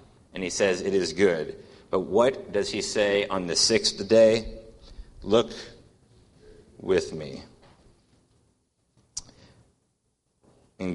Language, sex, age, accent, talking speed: English, male, 30-49, American, 105 wpm